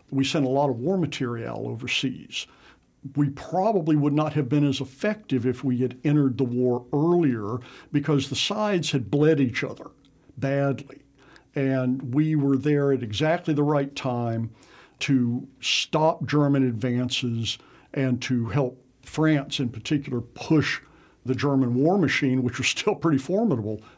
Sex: male